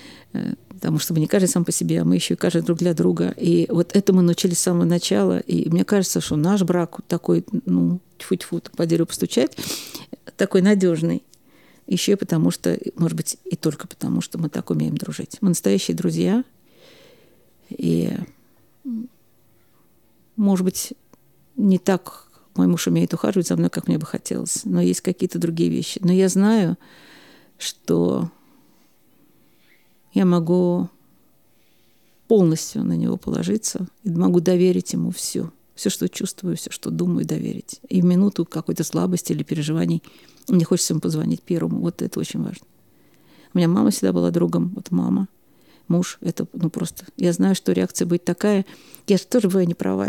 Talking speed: 165 wpm